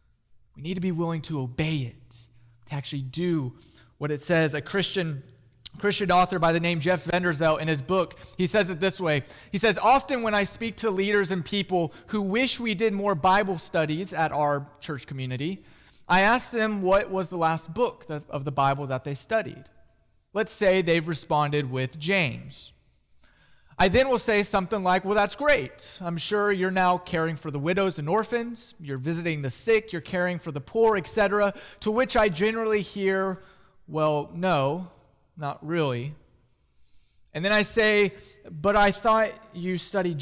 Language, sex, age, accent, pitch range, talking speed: English, male, 20-39, American, 150-205 Hz, 180 wpm